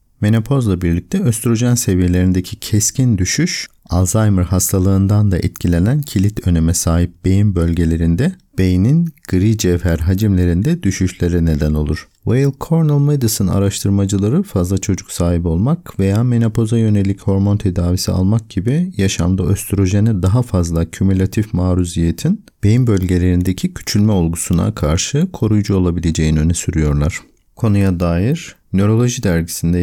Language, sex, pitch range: Turkish, male, 90-110 Hz